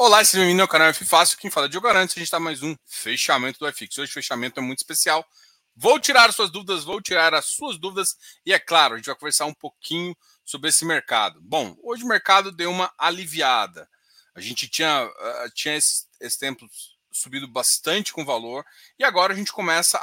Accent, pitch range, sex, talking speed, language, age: Brazilian, 145-210 Hz, male, 225 wpm, Portuguese, 20-39